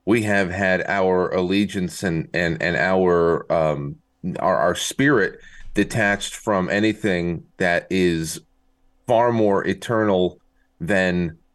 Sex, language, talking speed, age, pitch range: male, English, 115 wpm, 30-49, 90-115 Hz